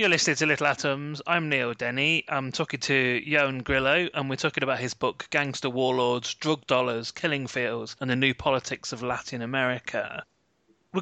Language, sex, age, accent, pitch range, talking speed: English, male, 30-49, British, 125-155 Hz, 180 wpm